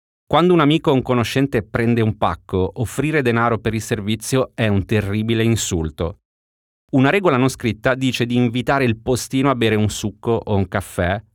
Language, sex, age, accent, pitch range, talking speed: Italian, male, 30-49, native, 100-130 Hz, 180 wpm